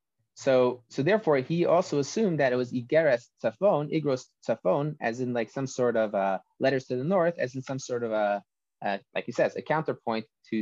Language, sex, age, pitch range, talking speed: English, male, 30-49, 115-160 Hz, 210 wpm